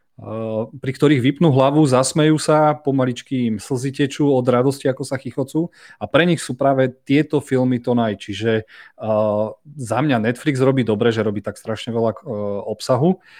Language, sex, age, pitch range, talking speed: Slovak, male, 30-49, 110-130 Hz, 175 wpm